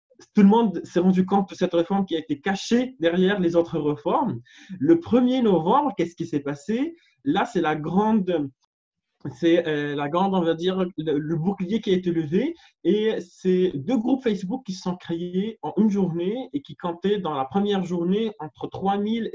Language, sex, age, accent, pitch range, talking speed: French, male, 20-39, French, 160-215 Hz, 190 wpm